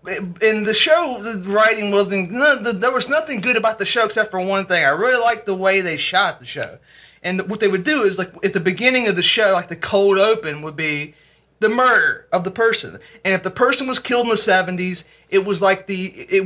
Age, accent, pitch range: 30-49, American, 175-220 Hz